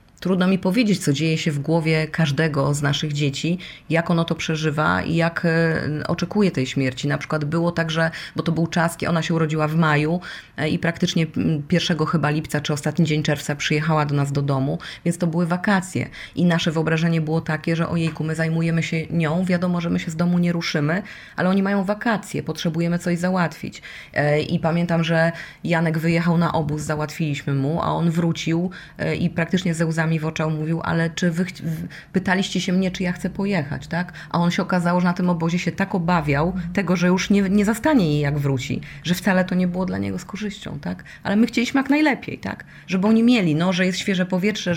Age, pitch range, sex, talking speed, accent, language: 30-49, 155-180 Hz, female, 210 wpm, native, Polish